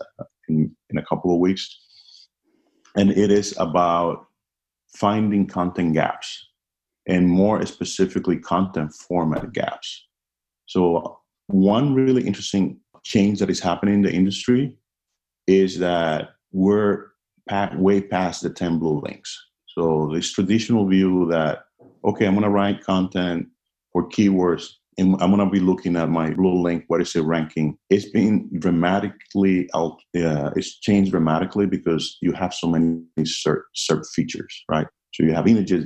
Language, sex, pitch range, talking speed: English, male, 85-100 Hz, 145 wpm